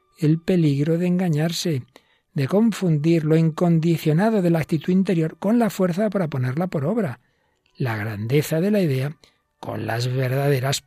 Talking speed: 150 wpm